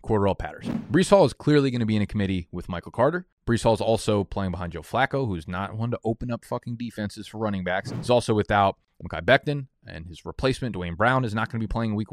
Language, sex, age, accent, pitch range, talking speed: English, male, 20-39, American, 95-120 Hz, 250 wpm